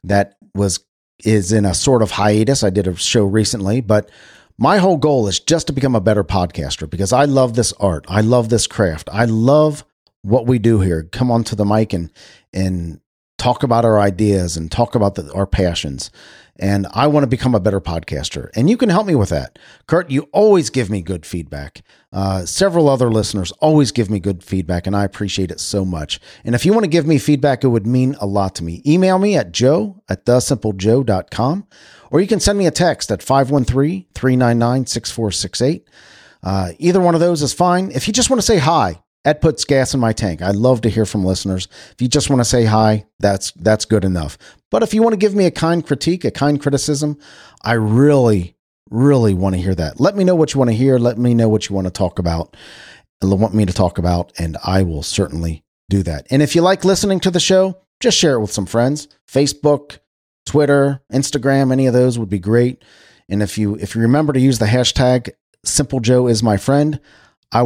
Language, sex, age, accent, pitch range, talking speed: English, male, 40-59, American, 100-140 Hz, 220 wpm